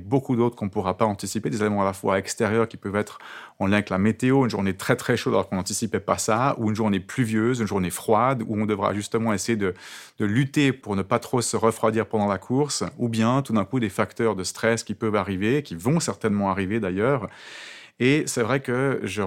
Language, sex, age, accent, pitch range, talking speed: French, male, 30-49, French, 105-125 Hz, 240 wpm